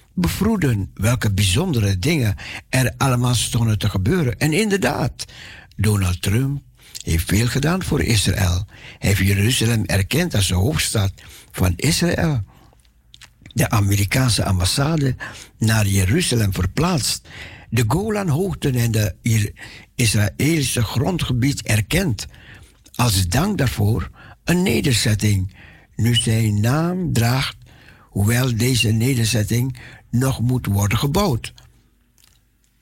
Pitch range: 105-135 Hz